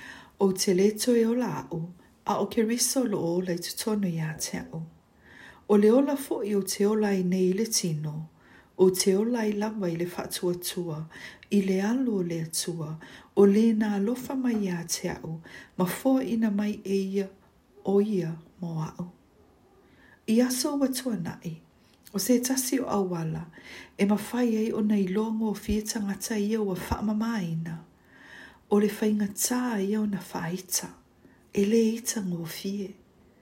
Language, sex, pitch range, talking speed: English, female, 175-225 Hz, 150 wpm